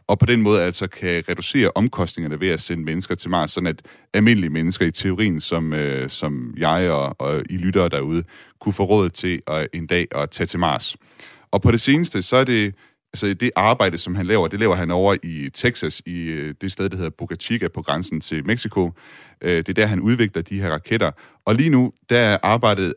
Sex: male